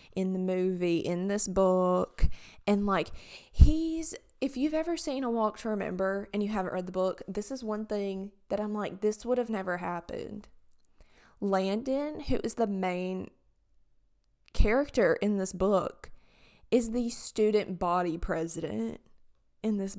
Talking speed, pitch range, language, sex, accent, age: 155 wpm, 185-235 Hz, English, female, American, 20-39